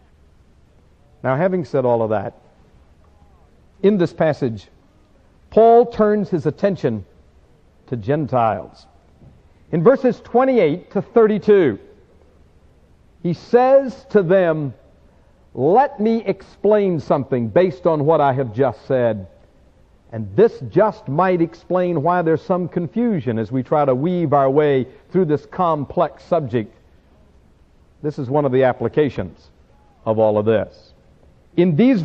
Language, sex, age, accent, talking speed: English, male, 60-79, American, 125 wpm